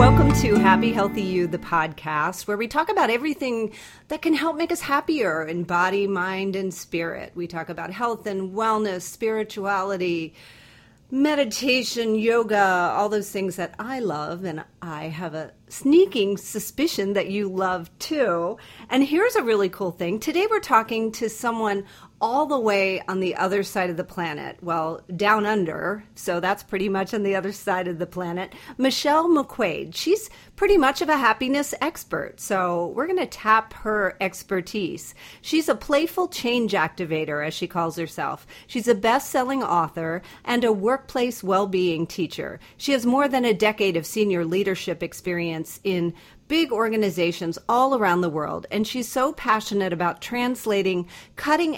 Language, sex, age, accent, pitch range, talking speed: English, female, 40-59, American, 175-240 Hz, 165 wpm